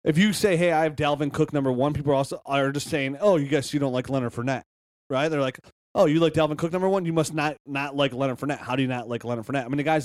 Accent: American